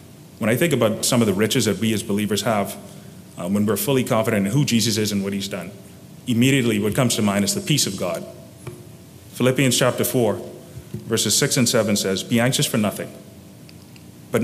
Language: English